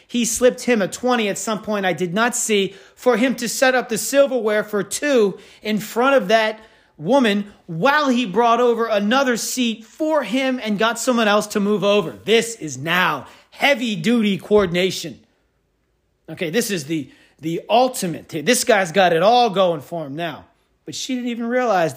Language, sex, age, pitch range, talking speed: English, male, 40-59, 190-245 Hz, 180 wpm